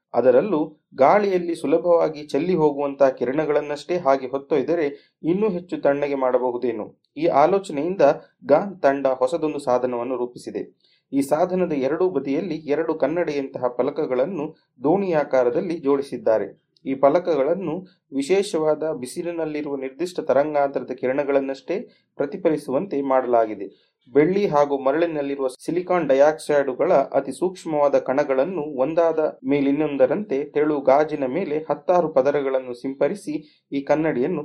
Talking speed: 95 wpm